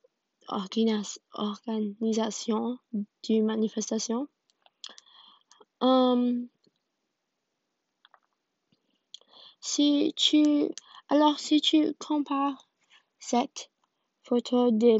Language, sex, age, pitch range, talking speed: French, female, 20-39, 220-270 Hz, 50 wpm